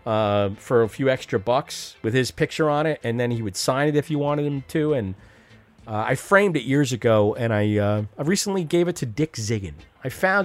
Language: English